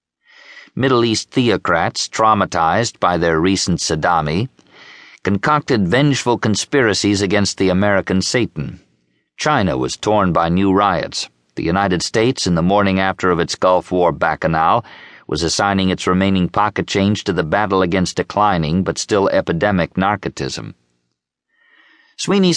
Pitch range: 85-100 Hz